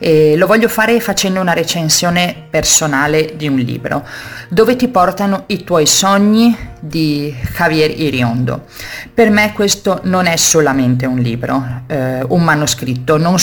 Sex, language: female, Italian